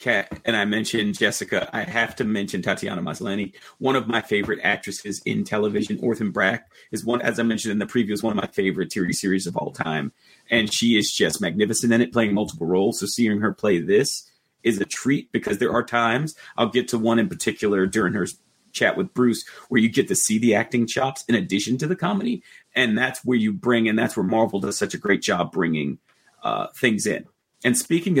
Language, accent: English, American